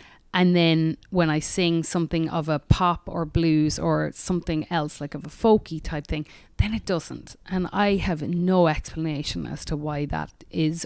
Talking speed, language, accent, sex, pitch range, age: 180 wpm, English, Irish, female, 145-175 Hz, 30-49